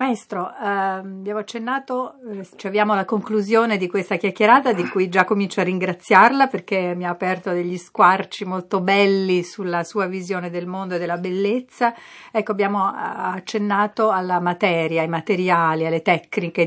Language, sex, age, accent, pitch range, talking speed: Italian, female, 50-69, native, 175-215 Hz, 155 wpm